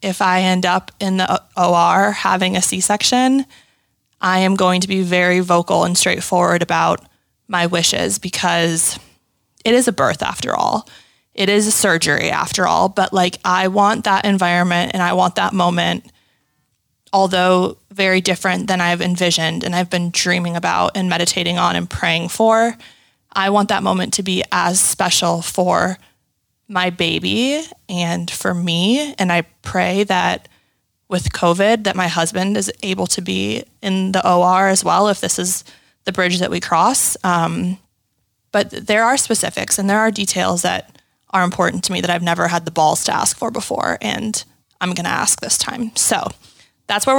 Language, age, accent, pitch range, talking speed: English, 20-39, American, 175-205 Hz, 175 wpm